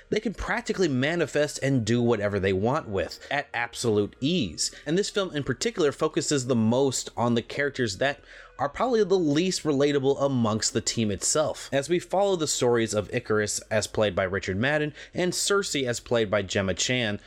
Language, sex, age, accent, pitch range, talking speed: English, male, 30-49, American, 110-155 Hz, 185 wpm